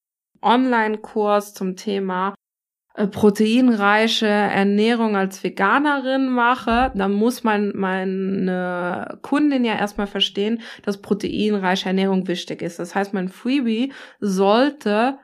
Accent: German